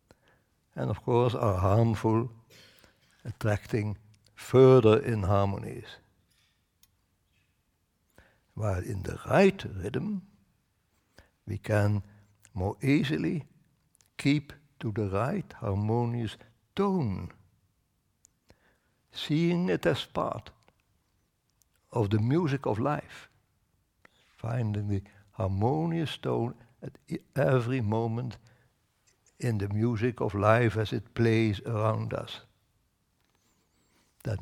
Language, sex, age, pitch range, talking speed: English, male, 60-79, 100-125 Hz, 90 wpm